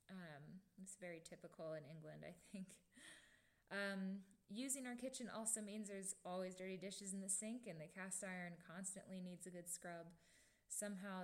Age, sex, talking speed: 10-29, female, 165 wpm